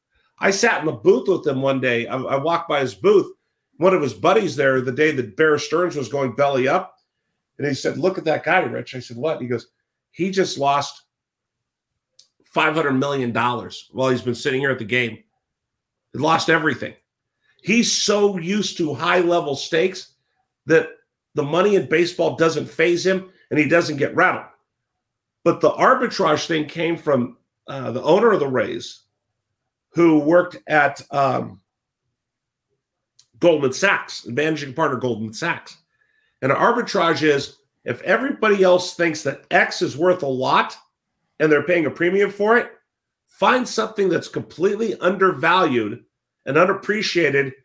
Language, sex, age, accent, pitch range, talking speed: English, male, 50-69, American, 135-185 Hz, 160 wpm